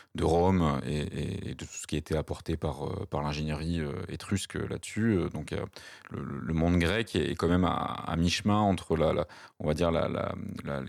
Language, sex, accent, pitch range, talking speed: French, male, French, 80-90 Hz, 205 wpm